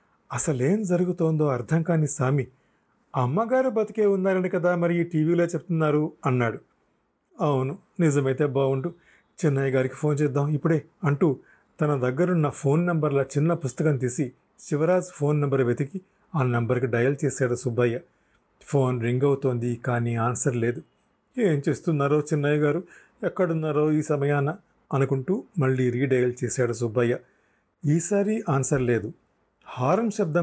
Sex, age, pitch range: male, 40-59, 125-160 Hz